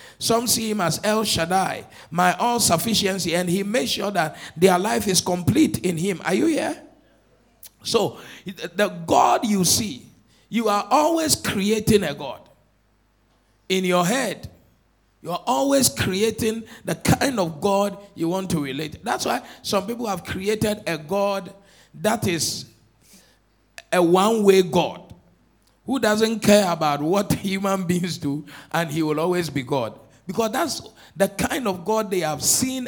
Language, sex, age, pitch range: English, male, 50-69, 165-220 Hz